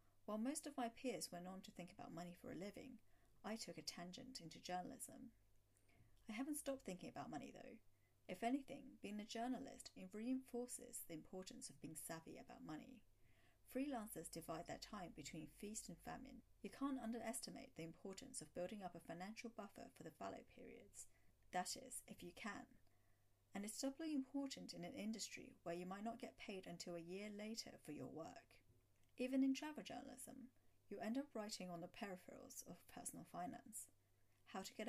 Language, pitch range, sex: English, 170-250 Hz, female